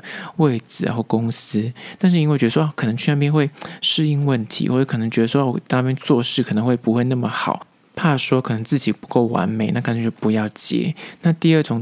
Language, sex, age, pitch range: Chinese, male, 20-39, 115-160 Hz